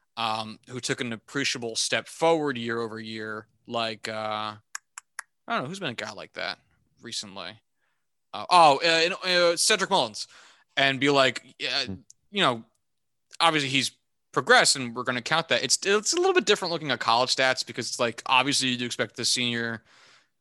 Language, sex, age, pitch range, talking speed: English, male, 20-39, 120-160 Hz, 180 wpm